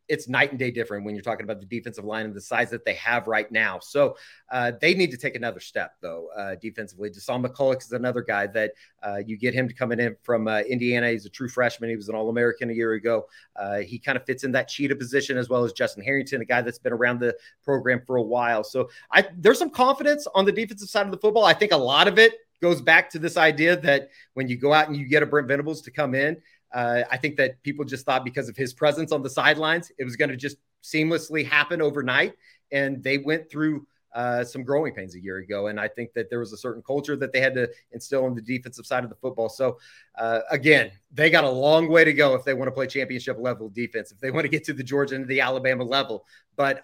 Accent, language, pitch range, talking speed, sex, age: American, English, 120-145 Hz, 260 wpm, male, 30-49